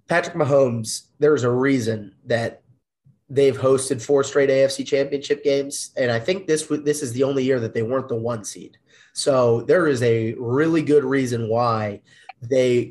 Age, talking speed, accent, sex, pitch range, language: 30-49, 170 wpm, American, male, 120-145 Hz, English